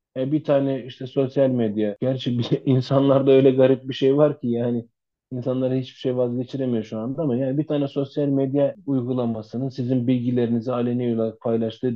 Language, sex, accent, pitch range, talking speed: Turkish, male, native, 110-130 Hz, 160 wpm